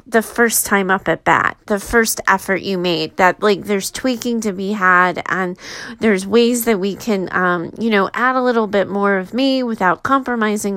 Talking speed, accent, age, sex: 200 wpm, American, 30-49, female